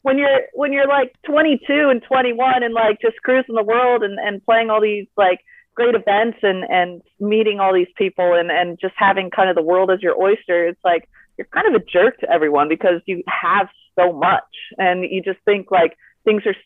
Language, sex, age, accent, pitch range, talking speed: English, female, 30-49, American, 180-220 Hz, 215 wpm